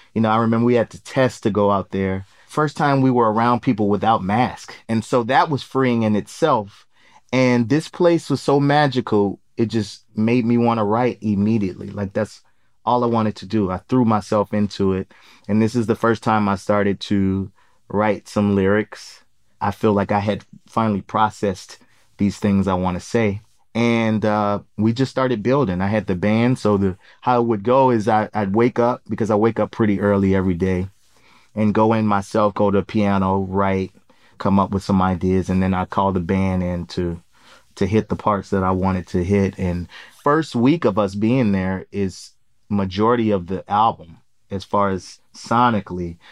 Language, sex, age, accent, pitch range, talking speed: English, male, 30-49, American, 95-115 Hz, 200 wpm